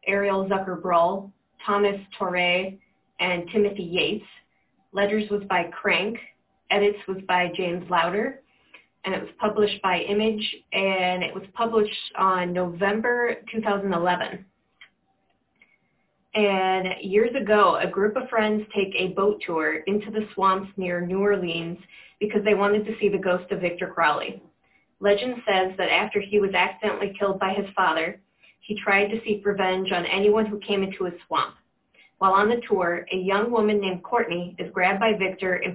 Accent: American